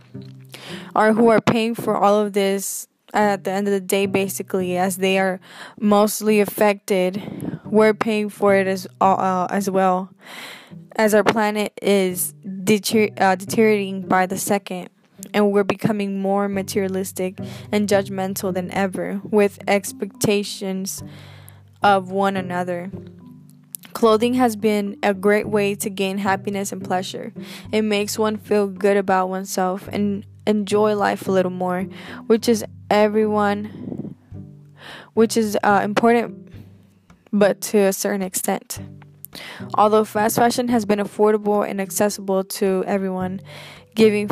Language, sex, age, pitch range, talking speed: English, female, 10-29, 190-210 Hz, 135 wpm